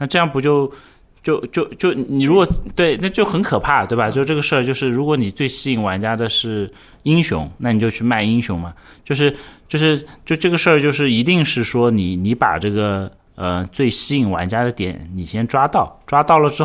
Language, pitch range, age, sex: Chinese, 90-135 Hz, 30-49, male